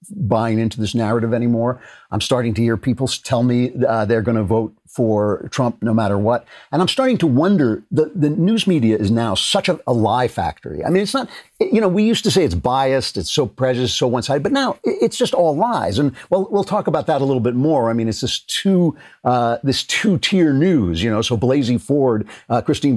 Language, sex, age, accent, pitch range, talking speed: English, male, 50-69, American, 110-145 Hz, 235 wpm